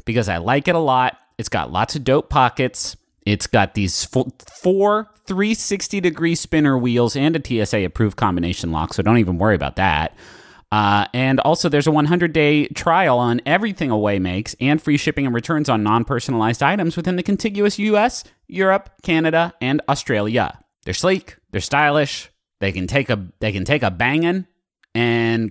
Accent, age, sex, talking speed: American, 30-49, male, 180 wpm